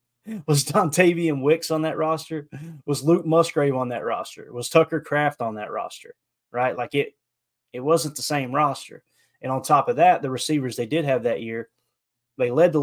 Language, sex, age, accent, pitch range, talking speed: English, male, 20-39, American, 120-155 Hz, 190 wpm